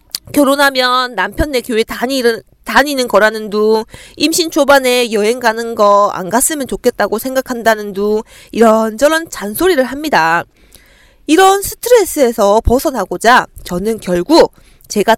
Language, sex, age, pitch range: Korean, female, 20-39, 210-320 Hz